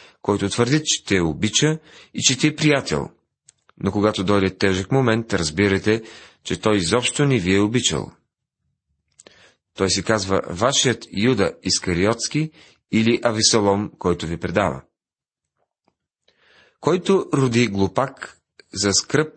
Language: Bulgarian